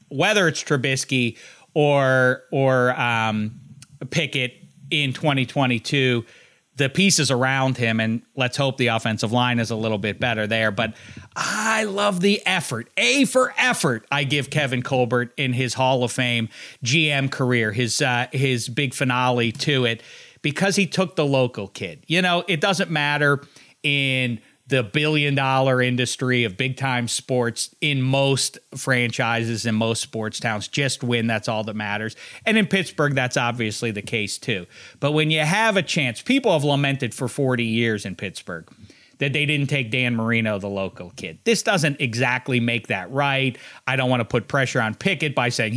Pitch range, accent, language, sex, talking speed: 120-145 Hz, American, English, male, 170 wpm